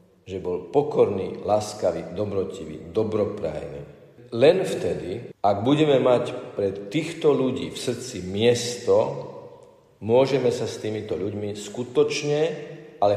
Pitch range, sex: 100-140 Hz, male